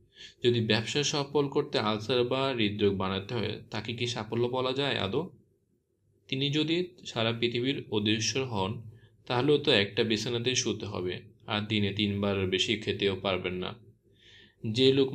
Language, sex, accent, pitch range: Bengali, male, native, 100-120 Hz